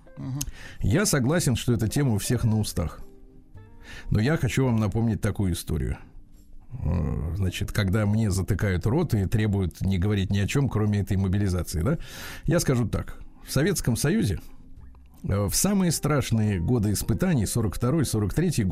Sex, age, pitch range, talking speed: male, 50-69, 95-130 Hz, 140 wpm